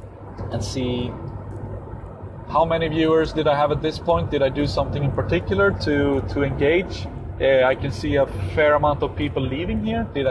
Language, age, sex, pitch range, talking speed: English, 30-49, male, 115-150 Hz, 185 wpm